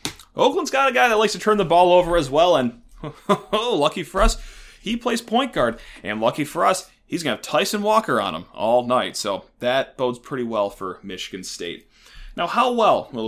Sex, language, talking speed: male, English, 215 wpm